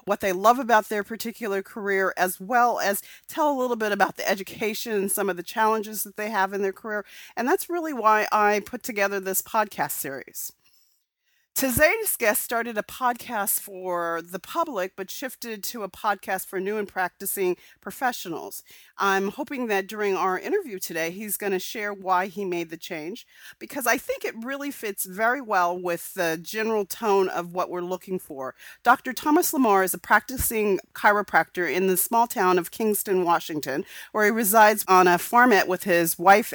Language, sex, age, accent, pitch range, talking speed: English, female, 40-59, American, 180-220 Hz, 185 wpm